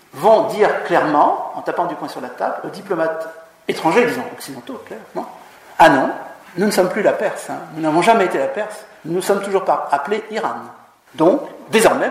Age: 50-69